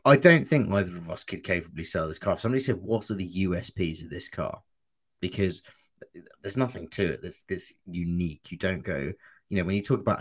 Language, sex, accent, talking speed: English, male, British, 215 wpm